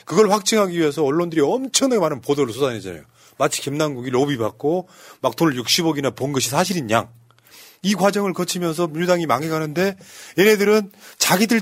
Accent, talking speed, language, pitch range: Korean, 135 wpm, English, 130-185 Hz